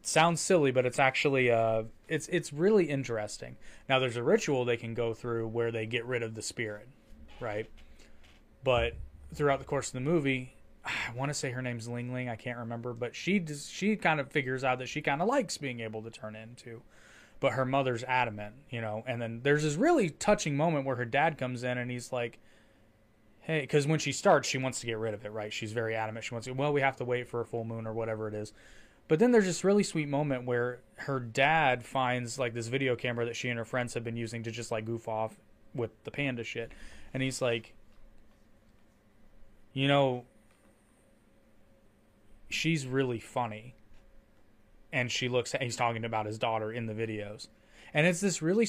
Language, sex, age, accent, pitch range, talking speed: English, male, 20-39, American, 110-145 Hz, 210 wpm